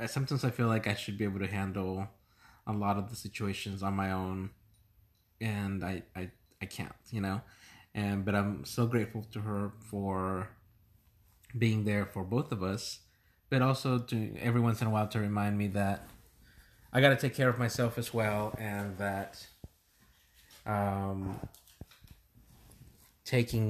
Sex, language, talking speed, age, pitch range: male, English, 160 wpm, 30-49, 95-110 Hz